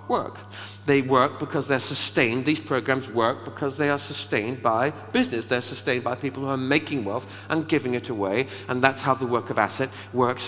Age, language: 50-69, English